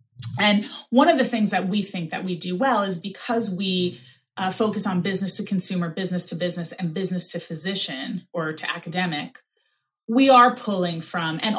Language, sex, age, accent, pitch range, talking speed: English, female, 30-49, American, 175-220 Hz, 185 wpm